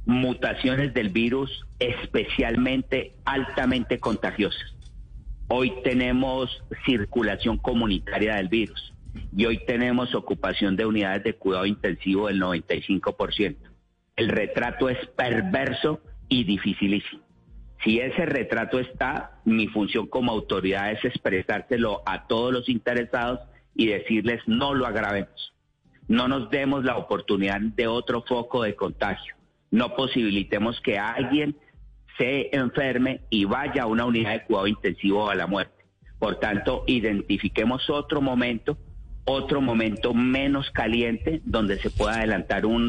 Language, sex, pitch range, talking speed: Spanish, male, 100-125 Hz, 125 wpm